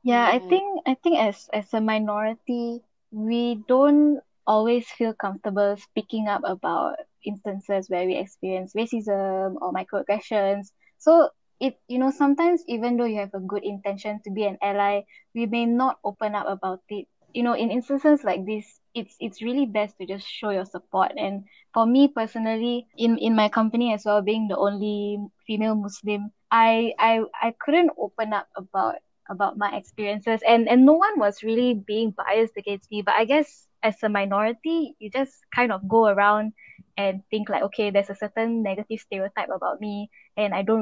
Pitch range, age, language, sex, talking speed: 200-235 Hz, 10-29, English, female, 180 wpm